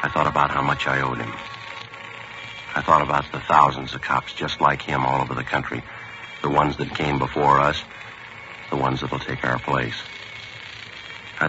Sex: male